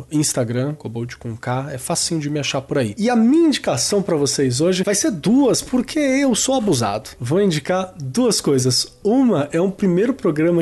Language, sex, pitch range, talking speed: Portuguese, male, 140-180 Hz, 190 wpm